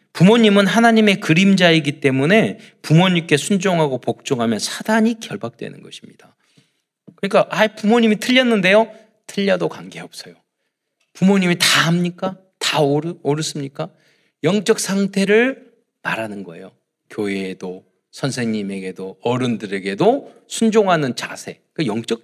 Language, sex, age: Korean, male, 40-59